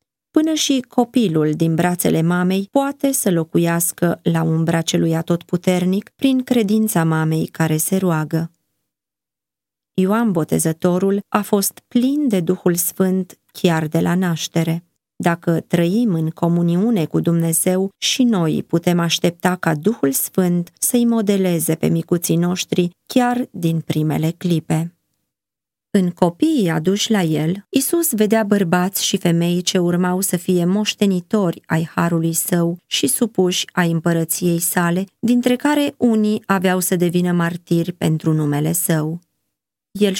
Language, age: Romanian, 20-39